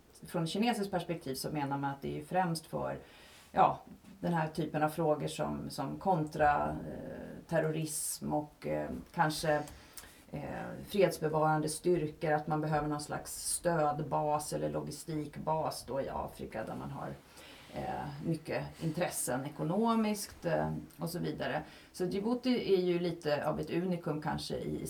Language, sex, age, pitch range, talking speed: English, female, 30-49, 125-175 Hz, 145 wpm